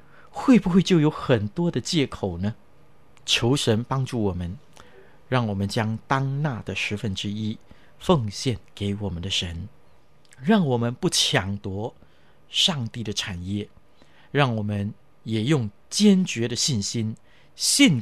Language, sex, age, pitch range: Chinese, male, 50-69, 100-135 Hz